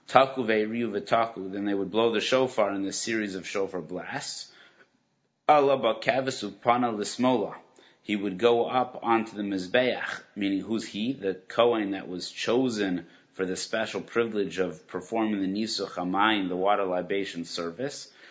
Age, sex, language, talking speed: 30-49, male, English, 140 wpm